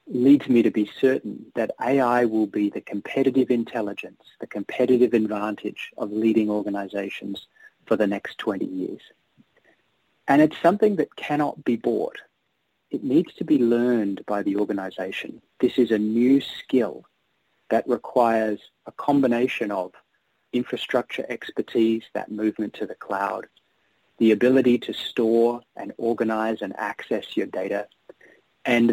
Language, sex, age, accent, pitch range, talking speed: English, male, 40-59, Australian, 110-130 Hz, 135 wpm